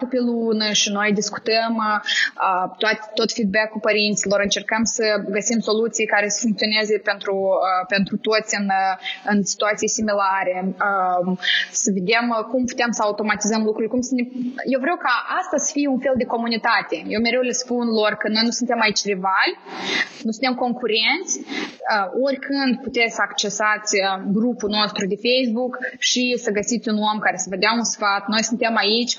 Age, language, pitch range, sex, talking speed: 20-39, Romanian, 205-235 Hz, female, 160 wpm